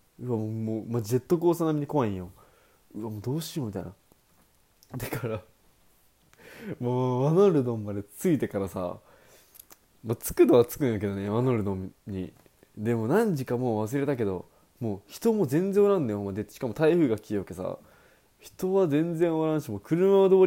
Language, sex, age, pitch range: Japanese, male, 20-39, 105-150 Hz